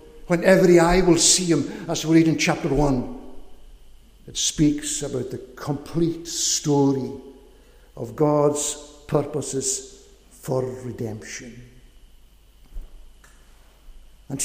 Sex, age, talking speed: male, 60-79, 100 wpm